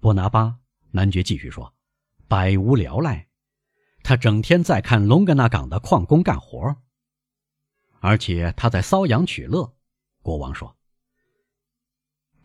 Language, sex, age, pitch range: Chinese, male, 50-69, 105-145 Hz